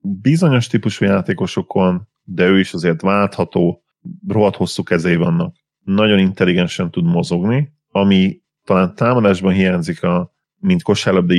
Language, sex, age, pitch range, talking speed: Hungarian, male, 30-49, 90-110 Hz, 120 wpm